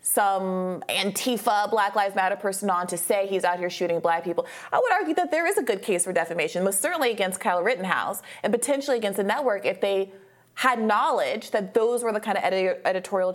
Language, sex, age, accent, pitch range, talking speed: English, female, 30-49, American, 180-240 Hz, 215 wpm